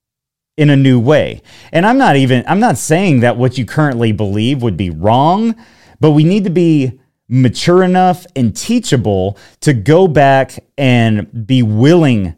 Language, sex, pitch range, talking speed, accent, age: English, male, 110-160 Hz, 165 wpm, American, 30-49